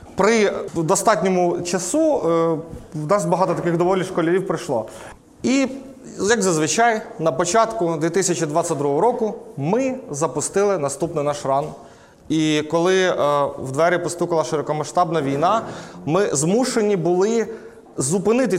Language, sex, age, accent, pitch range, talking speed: Ukrainian, male, 30-49, native, 160-195 Hz, 105 wpm